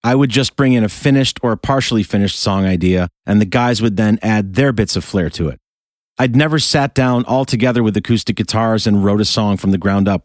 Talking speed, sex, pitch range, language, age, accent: 240 wpm, male, 100-130 Hz, English, 40-59, American